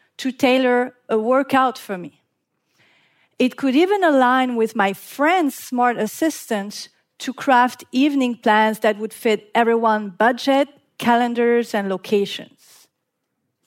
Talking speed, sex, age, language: 120 wpm, female, 40-59, English